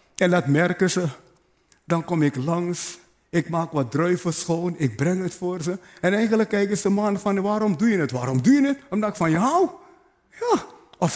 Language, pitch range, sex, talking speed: Dutch, 160-245 Hz, male, 205 wpm